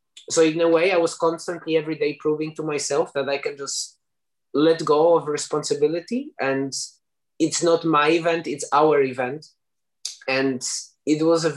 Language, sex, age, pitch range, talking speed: English, male, 20-39, 130-155 Hz, 165 wpm